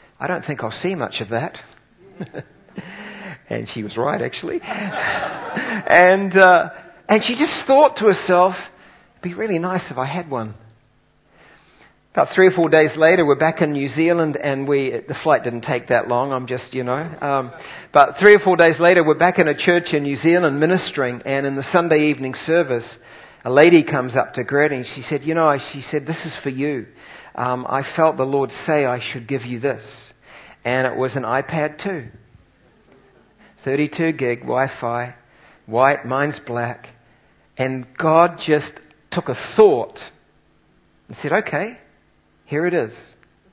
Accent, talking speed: Australian, 170 wpm